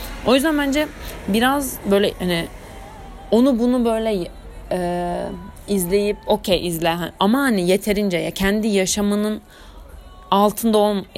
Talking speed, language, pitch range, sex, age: 115 wpm, Turkish, 170-220 Hz, female, 30-49